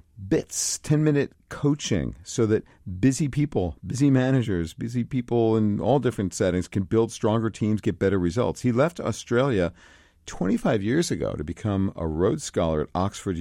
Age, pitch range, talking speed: 40-59, 85-125 Hz, 155 wpm